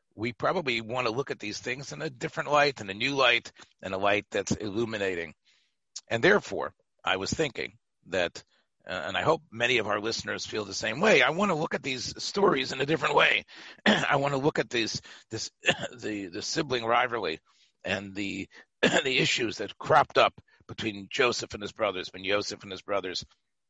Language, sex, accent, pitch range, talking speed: English, male, American, 100-125 Hz, 200 wpm